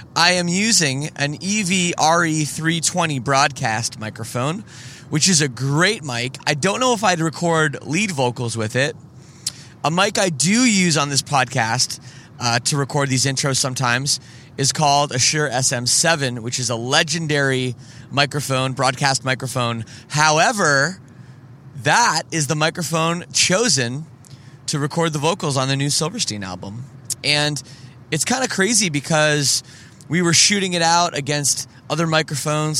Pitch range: 125-160 Hz